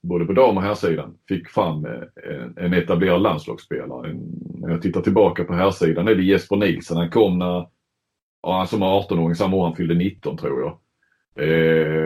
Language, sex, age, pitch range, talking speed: Swedish, male, 30-49, 80-90 Hz, 190 wpm